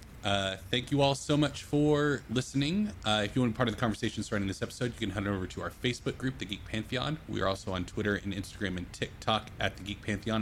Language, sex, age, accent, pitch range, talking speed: English, male, 30-49, American, 100-120 Hz, 260 wpm